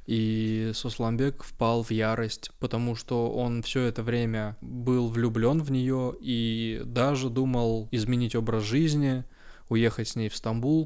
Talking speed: 145 wpm